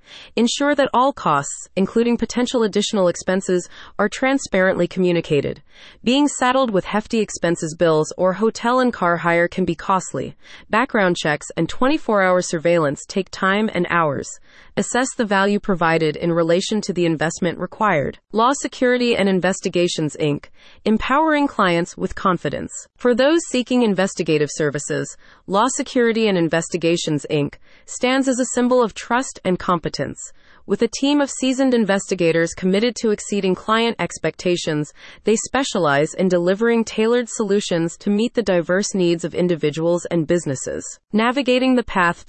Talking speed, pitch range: 140 wpm, 170-235 Hz